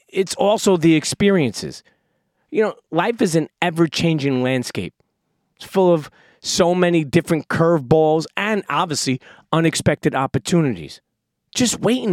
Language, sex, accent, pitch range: English, male, American, 150-190 Hz